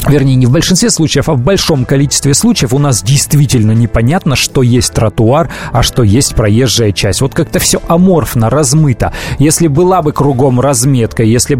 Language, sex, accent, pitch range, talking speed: Russian, male, native, 120-150 Hz, 170 wpm